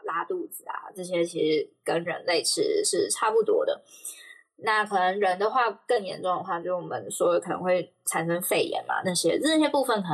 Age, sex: 10-29, female